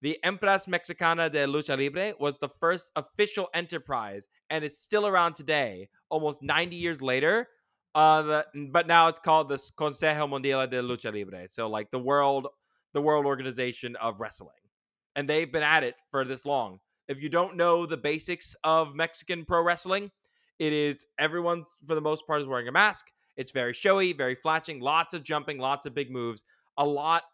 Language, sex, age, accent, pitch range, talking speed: English, male, 20-39, American, 140-170 Hz, 185 wpm